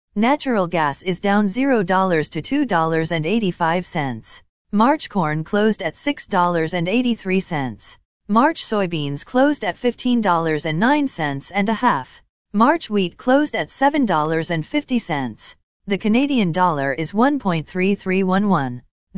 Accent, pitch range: American, 160-235 Hz